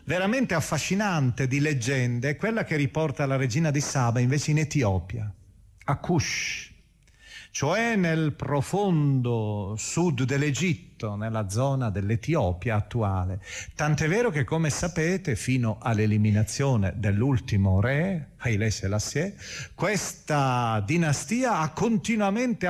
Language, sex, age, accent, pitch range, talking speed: Italian, male, 40-59, native, 105-165 Hz, 110 wpm